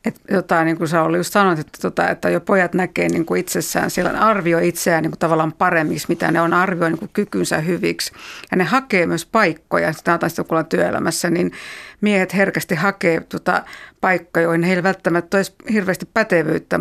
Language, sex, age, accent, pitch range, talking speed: Finnish, female, 60-79, native, 170-205 Hz, 185 wpm